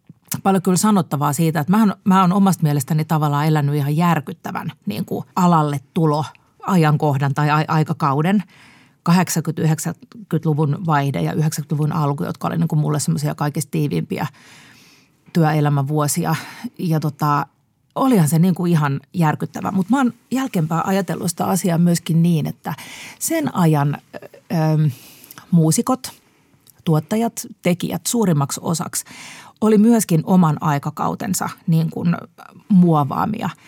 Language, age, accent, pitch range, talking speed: Finnish, 40-59, native, 155-185 Hz, 115 wpm